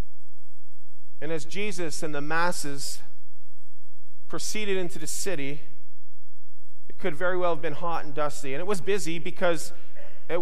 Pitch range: 130-195 Hz